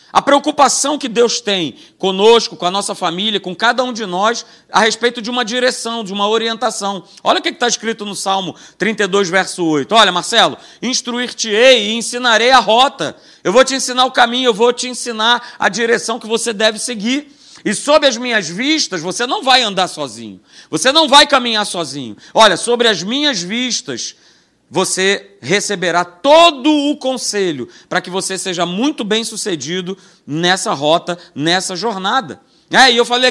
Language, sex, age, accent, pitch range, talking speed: Portuguese, male, 40-59, Brazilian, 200-255 Hz, 170 wpm